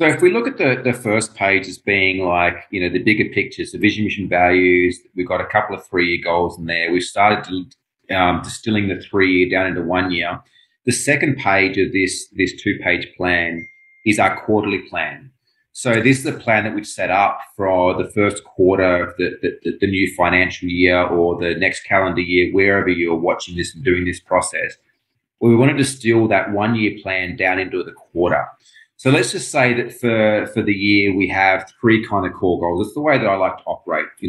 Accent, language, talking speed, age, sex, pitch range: Australian, English, 220 wpm, 30-49, male, 90-110 Hz